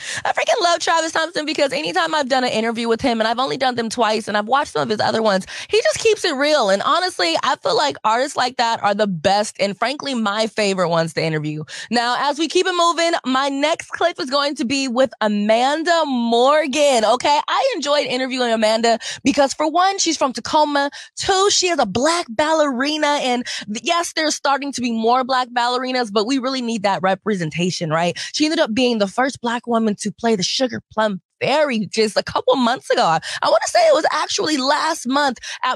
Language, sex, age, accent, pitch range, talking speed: English, female, 20-39, American, 220-305 Hz, 215 wpm